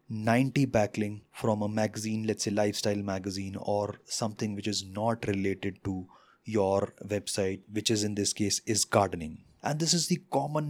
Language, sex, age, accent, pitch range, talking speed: English, male, 20-39, Indian, 105-130 Hz, 170 wpm